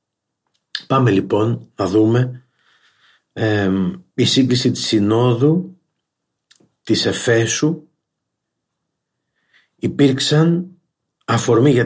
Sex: male